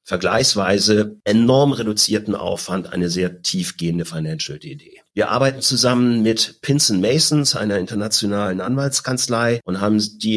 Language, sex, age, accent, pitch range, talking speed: German, male, 40-59, German, 100-125 Hz, 120 wpm